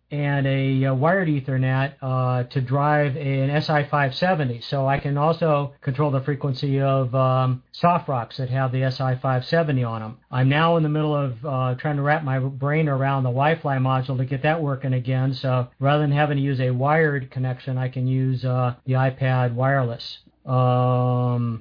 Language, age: English, 50-69